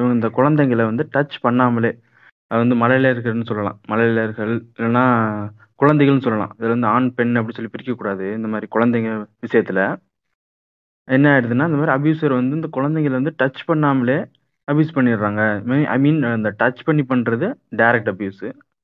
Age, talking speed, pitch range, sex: 20-39, 125 wpm, 115-140 Hz, male